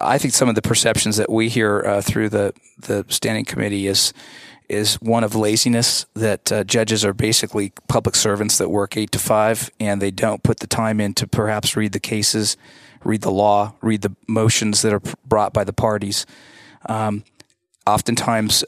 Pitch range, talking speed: 105-115 Hz, 190 wpm